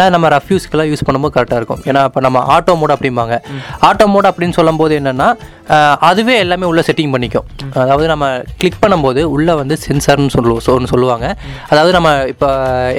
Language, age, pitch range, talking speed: Tamil, 20-39, 135-165 Hz, 140 wpm